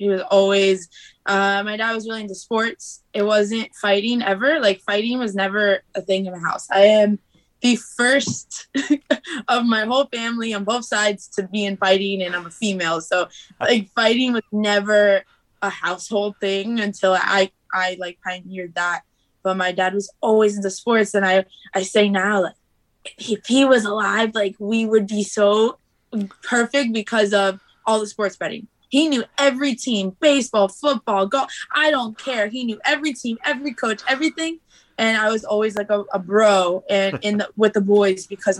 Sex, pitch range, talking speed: female, 195-230 Hz, 180 wpm